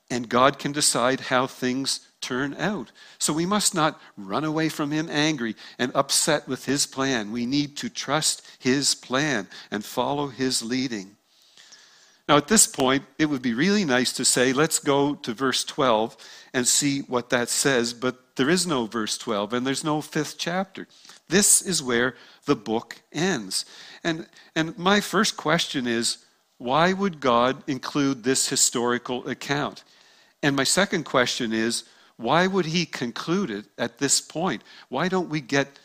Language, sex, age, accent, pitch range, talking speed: English, male, 50-69, American, 125-155 Hz, 165 wpm